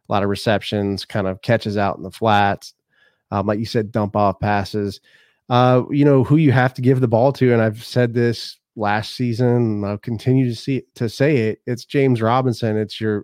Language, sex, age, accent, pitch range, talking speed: English, male, 30-49, American, 105-125 Hz, 220 wpm